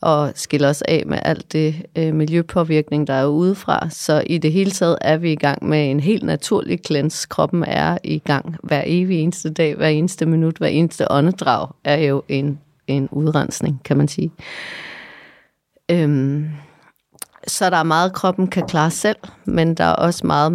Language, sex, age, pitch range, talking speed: Danish, female, 30-49, 150-180 Hz, 180 wpm